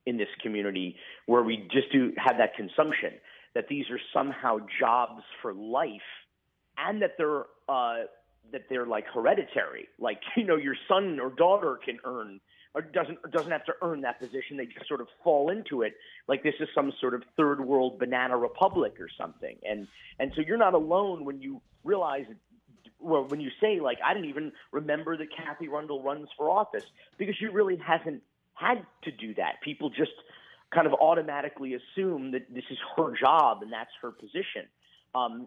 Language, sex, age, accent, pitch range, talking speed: English, male, 40-59, American, 125-170 Hz, 185 wpm